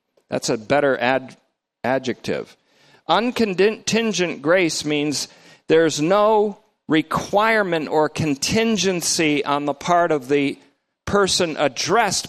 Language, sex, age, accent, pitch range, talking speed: English, male, 50-69, American, 150-220 Hz, 100 wpm